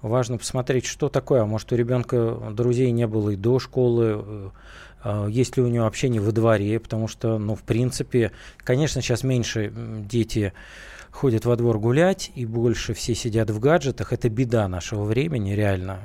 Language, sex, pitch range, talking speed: Russian, male, 110-135 Hz, 170 wpm